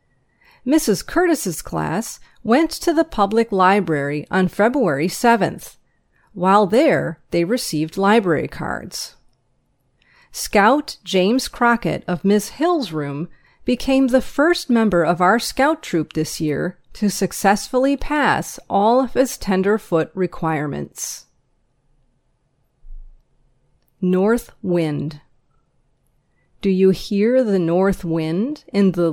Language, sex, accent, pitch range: English, female, American, 165-220 Hz